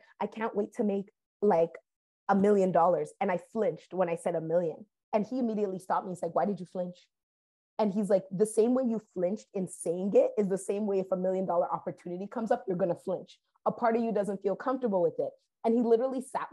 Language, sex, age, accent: English, female, 20-39, American